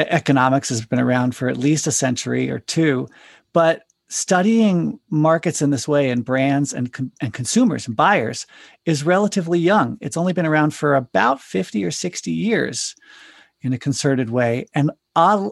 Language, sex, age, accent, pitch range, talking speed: English, male, 40-59, American, 130-155 Hz, 170 wpm